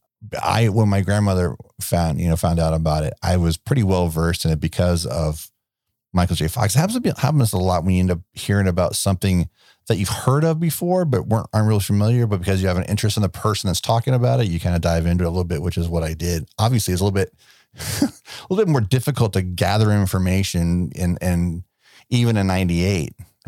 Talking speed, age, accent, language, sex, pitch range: 235 wpm, 40-59, American, English, male, 80-105 Hz